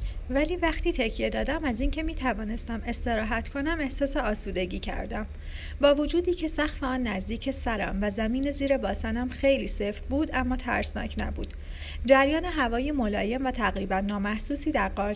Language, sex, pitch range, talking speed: Persian, female, 205-275 Hz, 150 wpm